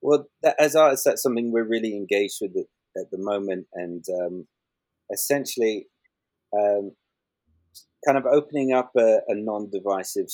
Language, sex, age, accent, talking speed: English, male, 30-49, British, 135 wpm